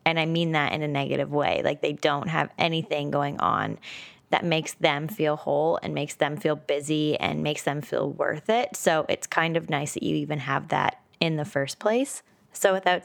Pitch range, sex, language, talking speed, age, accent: 150-175 Hz, female, English, 215 wpm, 20-39, American